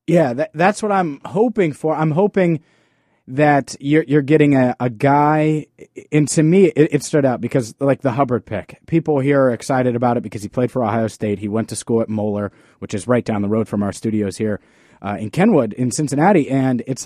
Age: 30-49